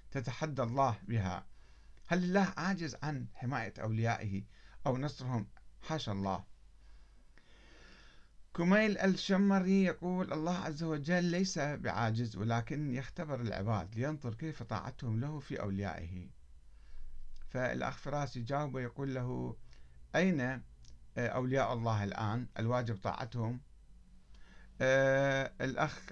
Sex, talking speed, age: male, 100 wpm, 50-69